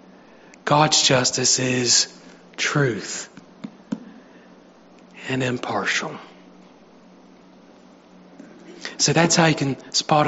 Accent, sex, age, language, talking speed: American, male, 40-59, English, 70 wpm